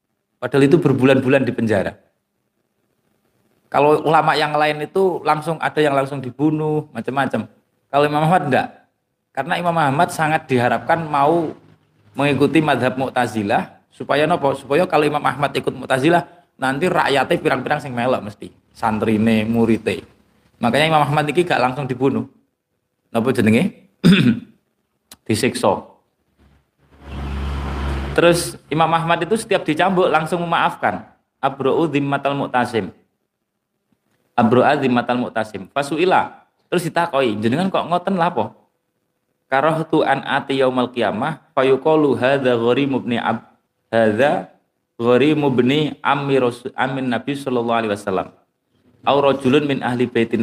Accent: native